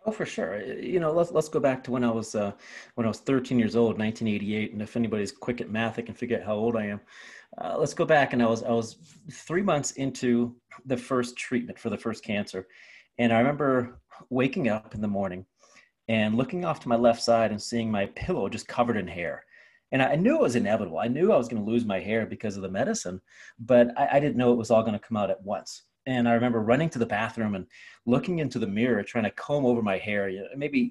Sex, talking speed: male, 250 wpm